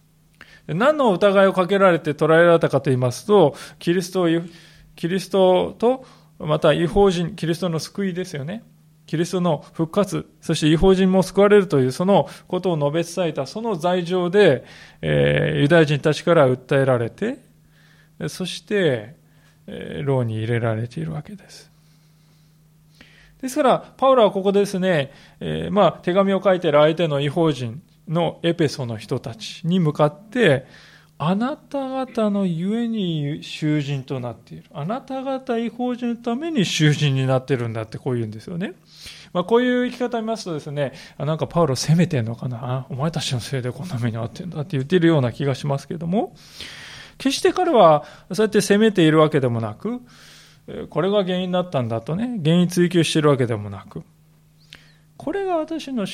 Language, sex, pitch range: Japanese, male, 145-195 Hz